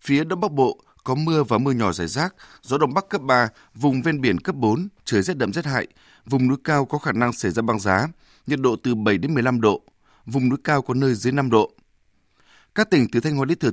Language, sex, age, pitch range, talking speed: Vietnamese, male, 20-39, 110-145 Hz, 255 wpm